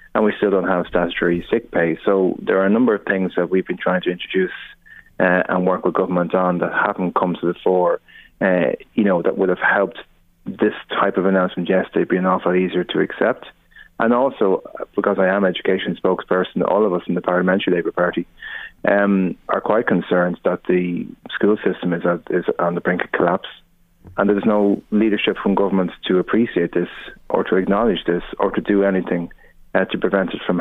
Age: 30-49